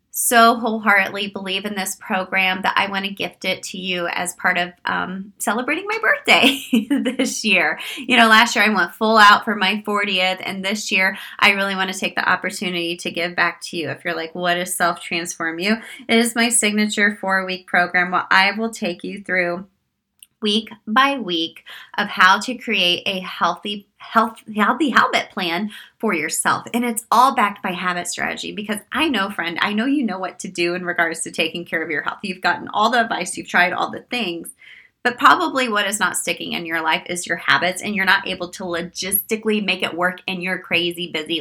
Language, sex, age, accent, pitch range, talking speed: English, female, 20-39, American, 180-220 Hz, 210 wpm